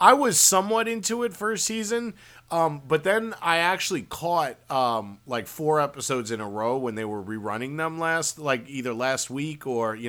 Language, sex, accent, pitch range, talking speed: English, male, American, 110-145 Hz, 190 wpm